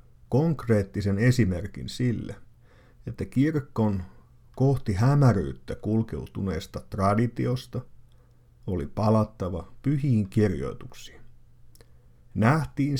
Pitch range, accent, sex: 100-125 Hz, native, male